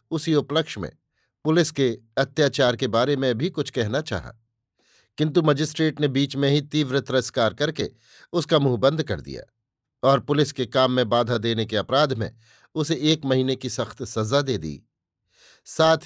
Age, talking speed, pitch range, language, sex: 50-69, 170 wpm, 120-150 Hz, Hindi, male